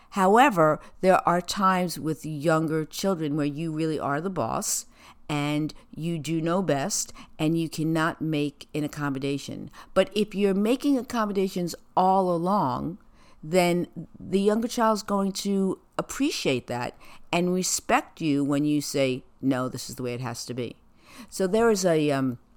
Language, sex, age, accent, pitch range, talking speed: English, female, 50-69, American, 130-175 Hz, 160 wpm